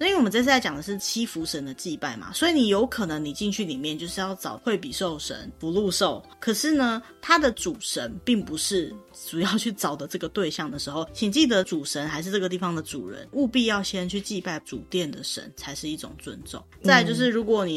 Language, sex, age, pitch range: Chinese, female, 20-39, 160-230 Hz